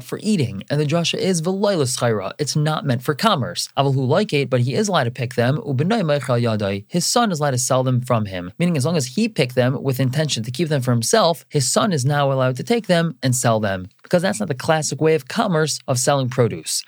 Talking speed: 240 wpm